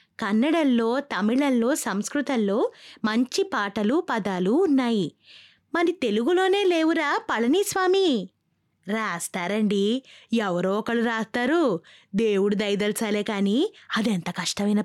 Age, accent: 20-39, native